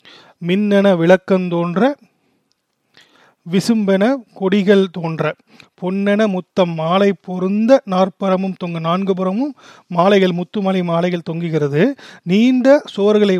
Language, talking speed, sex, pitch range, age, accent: Tamil, 85 wpm, male, 175-210 Hz, 30-49, native